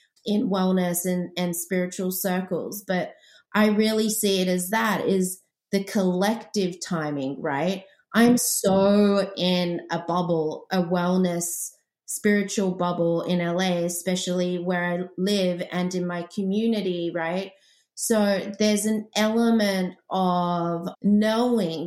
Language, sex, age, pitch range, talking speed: English, female, 30-49, 185-230 Hz, 120 wpm